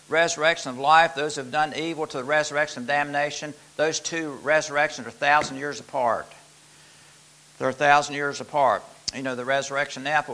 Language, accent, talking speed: English, American, 180 wpm